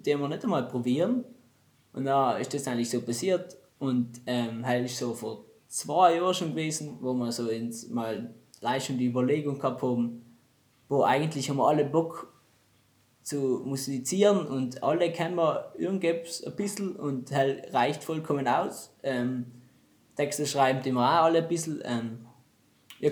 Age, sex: 20-39, male